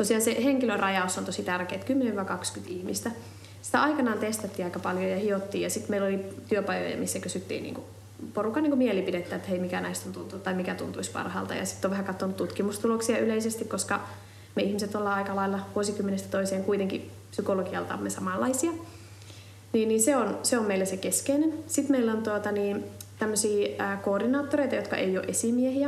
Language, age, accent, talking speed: Finnish, 20-39, native, 165 wpm